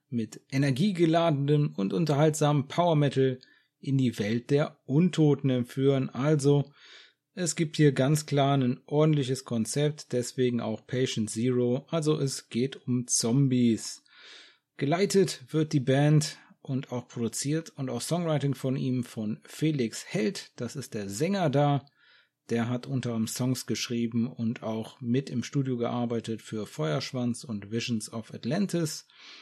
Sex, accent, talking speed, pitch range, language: male, German, 135 wpm, 120-150 Hz, German